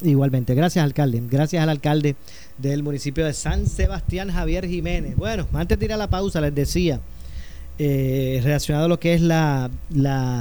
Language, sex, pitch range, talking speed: Spanish, male, 130-160 Hz, 165 wpm